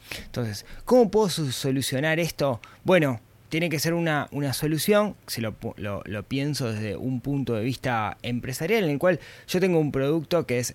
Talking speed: 175 wpm